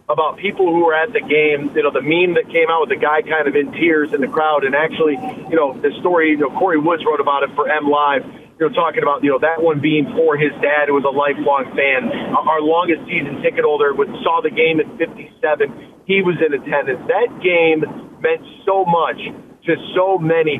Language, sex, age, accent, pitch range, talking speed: English, male, 40-59, American, 155-200 Hz, 225 wpm